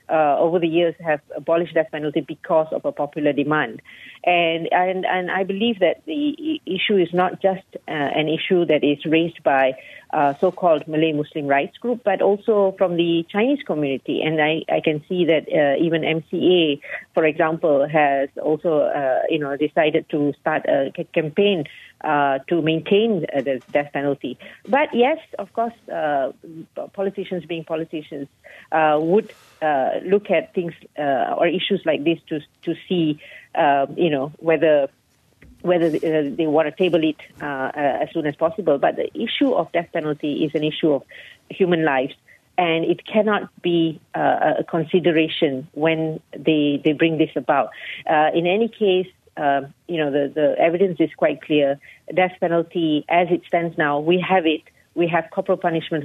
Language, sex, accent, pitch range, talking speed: English, female, Malaysian, 150-180 Hz, 175 wpm